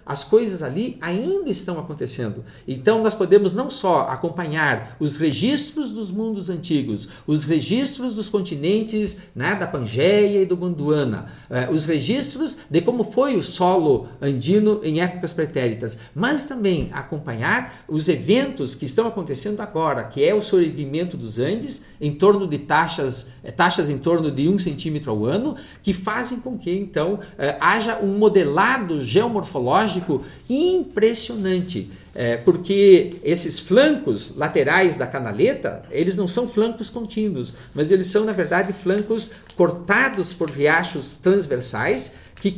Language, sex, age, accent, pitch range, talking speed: Portuguese, male, 50-69, Brazilian, 155-220 Hz, 140 wpm